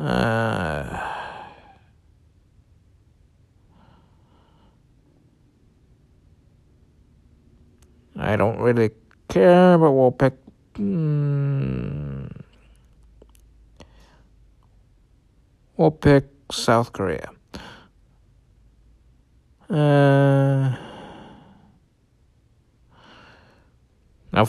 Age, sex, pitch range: 60-79, male, 105-140 Hz